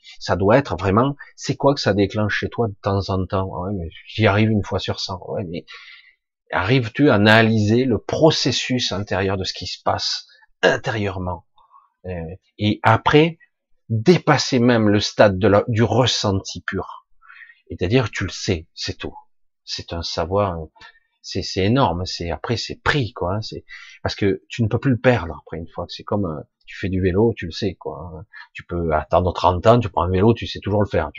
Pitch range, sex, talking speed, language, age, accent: 95-125 Hz, male, 200 wpm, French, 30-49, French